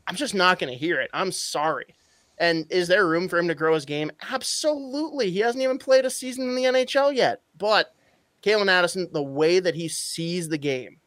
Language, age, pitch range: English, 20-39, 150-195 Hz